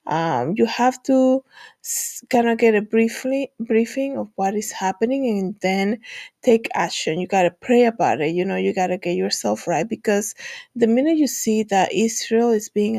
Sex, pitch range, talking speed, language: female, 200-250 Hz, 190 wpm, English